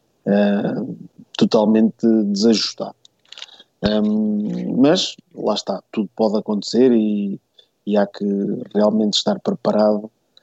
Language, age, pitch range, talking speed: Portuguese, 20-39, 105-130 Hz, 100 wpm